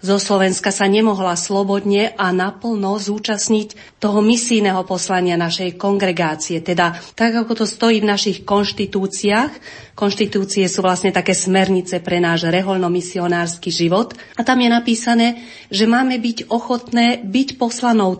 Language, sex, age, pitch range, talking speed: Slovak, female, 40-59, 185-220 Hz, 130 wpm